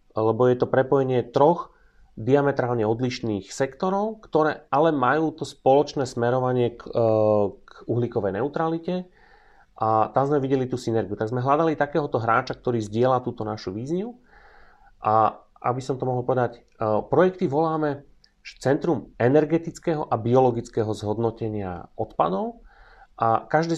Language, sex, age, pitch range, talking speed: Slovak, male, 30-49, 110-140 Hz, 125 wpm